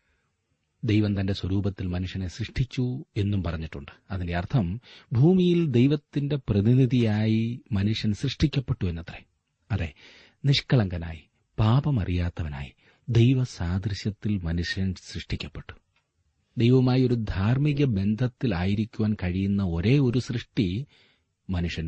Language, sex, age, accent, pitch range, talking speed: Malayalam, male, 40-59, native, 85-115 Hz, 80 wpm